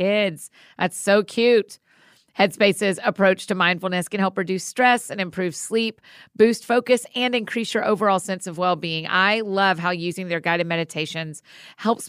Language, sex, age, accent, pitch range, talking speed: English, female, 40-59, American, 170-210 Hz, 160 wpm